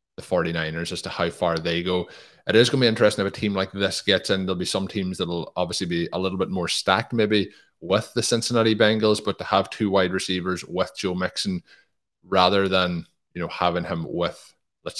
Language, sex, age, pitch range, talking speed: English, male, 20-39, 85-100 Hz, 220 wpm